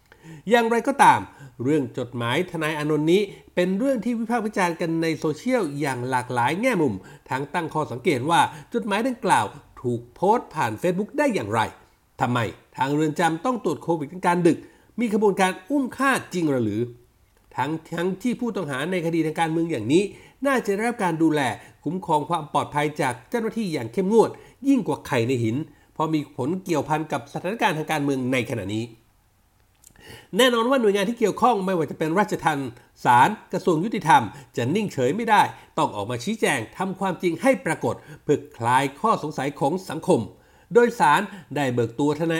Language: Thai